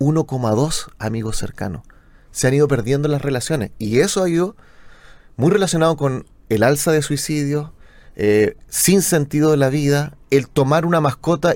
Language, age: Spanish, 30-49